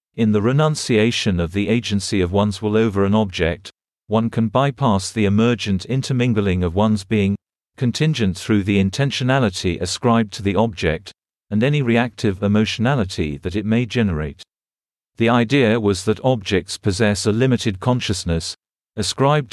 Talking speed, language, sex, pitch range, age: 145 wpm, English, male, 95-120 Hz, 50-69